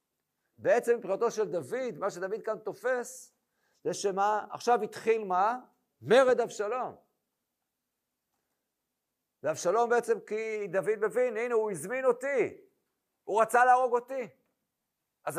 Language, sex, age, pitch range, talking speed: Hebrew, male, 50-69, 185-235 Hz, 115 wpm